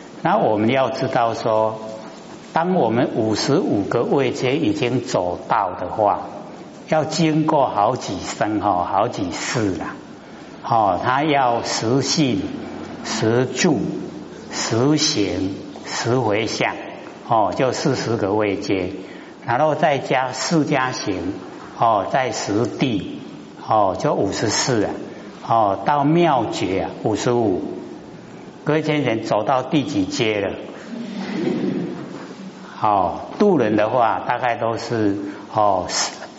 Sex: male